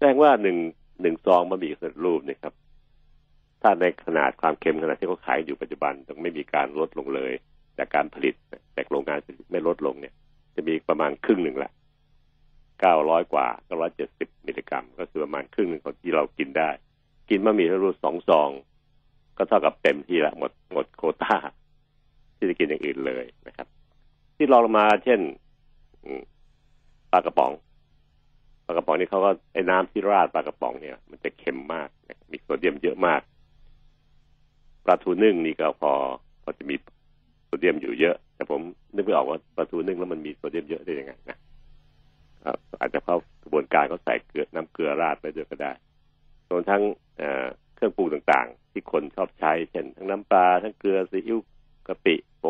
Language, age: Thai, 60-79